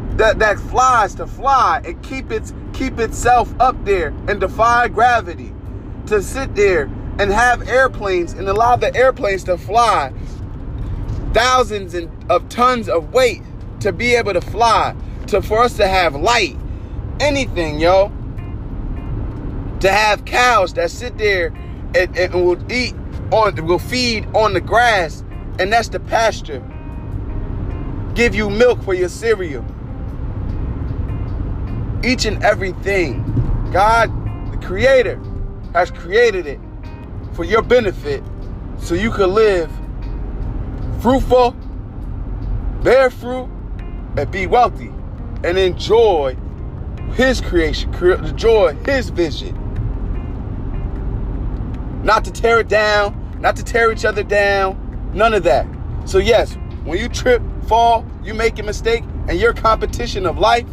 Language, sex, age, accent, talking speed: English, male, 20-39, American, 130 wpm